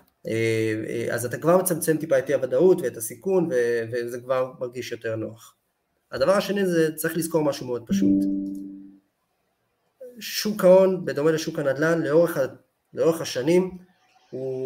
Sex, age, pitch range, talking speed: male, 20-39, 120-175 Hz, 130 wpm